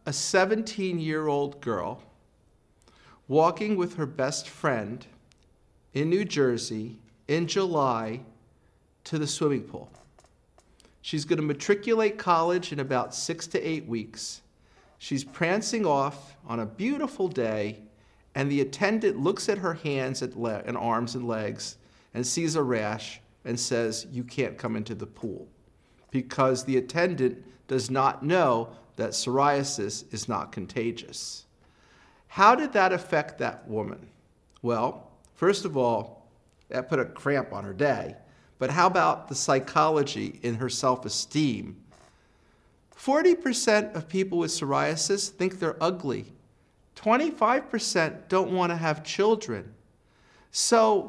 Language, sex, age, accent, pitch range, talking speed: English, male, 50-69, American, 125-185 Hz, 130 wpm